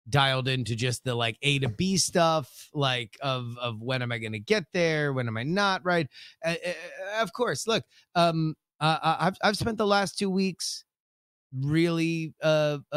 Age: 30-49